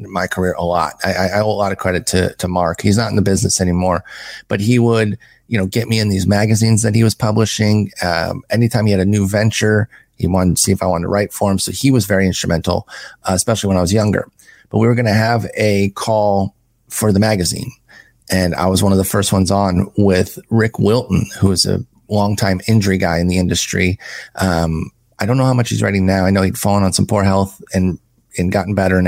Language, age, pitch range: English, 30-49, 95-115 Hz